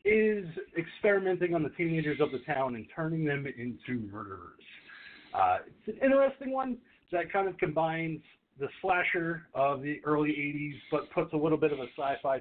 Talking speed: 175 wpm